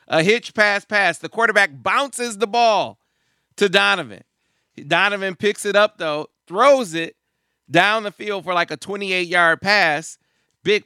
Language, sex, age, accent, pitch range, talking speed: English, male, 40-59, American, 140-190 Hz, 150 wpm